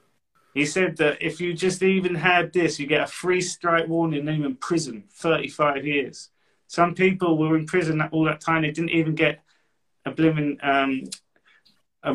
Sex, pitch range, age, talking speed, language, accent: male, 135-160 Hz, 30-49, 175 wpm, English, British